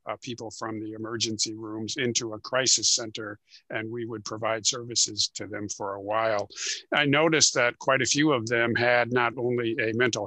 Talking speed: 195 wpm